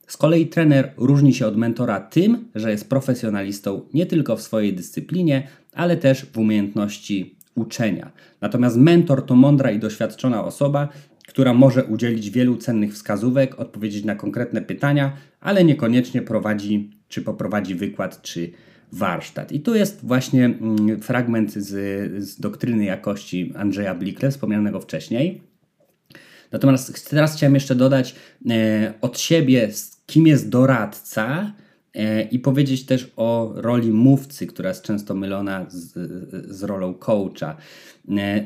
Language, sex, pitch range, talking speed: Polish, male, 105-135 Hz, 135 wpm